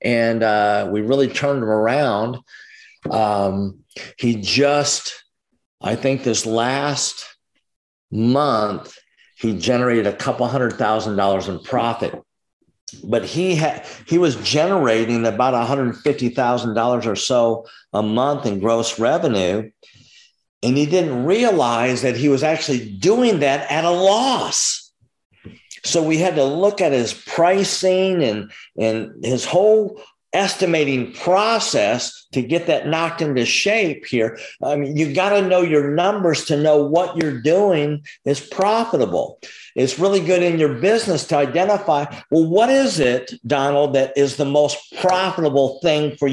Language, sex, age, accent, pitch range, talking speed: English, male, 50-69, American, 120-170 Hz, 140 wpm